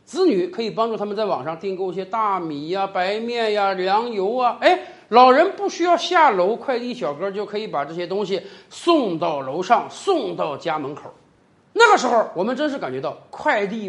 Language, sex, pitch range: Chinese, male, 195-305 Hz